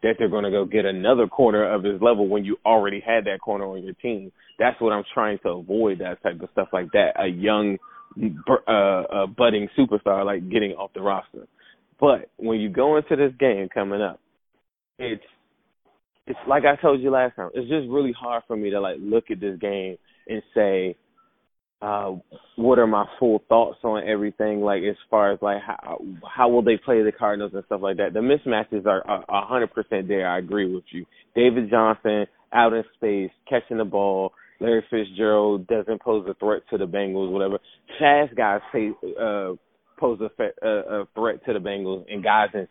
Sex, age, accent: male, 20-39, American